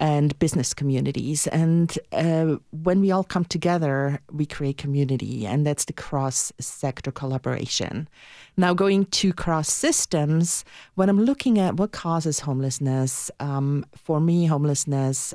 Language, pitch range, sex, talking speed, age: English, 135-165 Hz, female, 135 wpm, 40-59